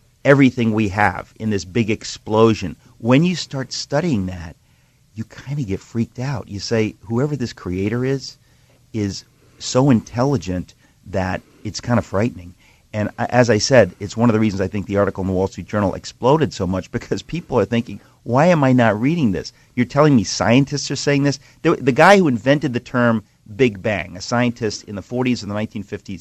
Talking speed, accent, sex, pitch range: 195 wpm, American, male, 105-135 Hz